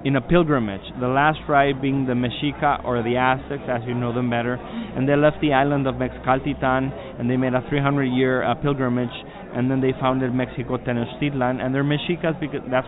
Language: English